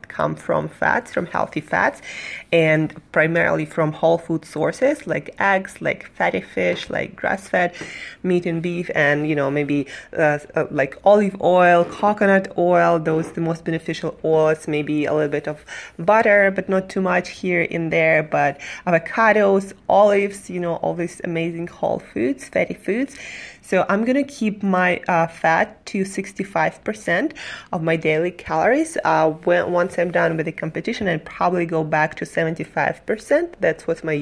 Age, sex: 20-39, female